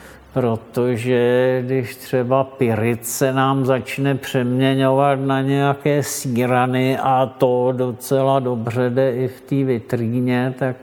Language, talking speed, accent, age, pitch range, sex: Czech, 115 wpm, native, 50-69, 120-130 Hz, male